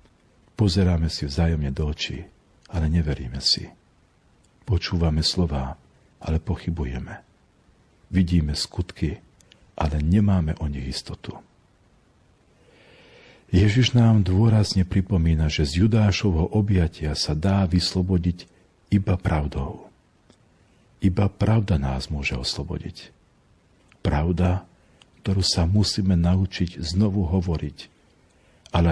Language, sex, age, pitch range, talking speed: Slovak, male, 50-69, 80-95 Hz, 95 wpm